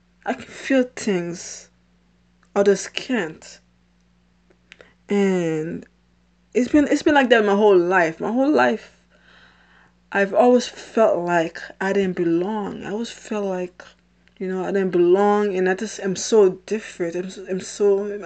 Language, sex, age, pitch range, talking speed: English, female, 20-39, 185-230 Hz, 145 wpm